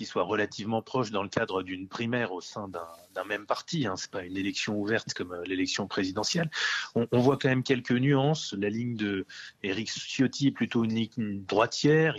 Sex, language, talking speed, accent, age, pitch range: male, French, 200 wpm, French, 30-49, 105-135 Hz